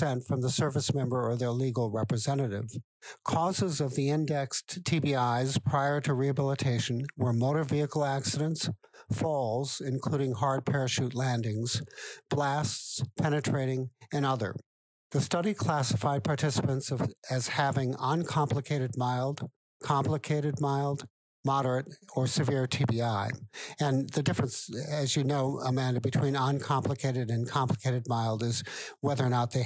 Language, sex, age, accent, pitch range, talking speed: English, male, 60-79, American, 125-145 Hz, 120 wpm